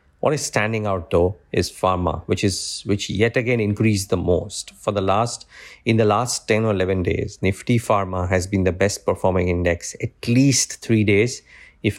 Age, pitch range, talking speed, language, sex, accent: 50-69, 95-105 Hz, 190 wpm, English, male, Indian